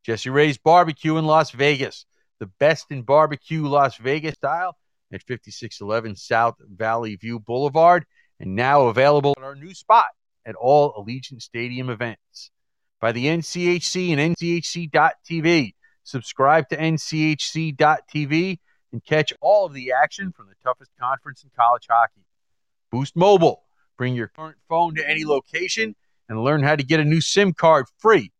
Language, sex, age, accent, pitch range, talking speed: English, male, 40-59, American, 125-155 Hz, 150 wpm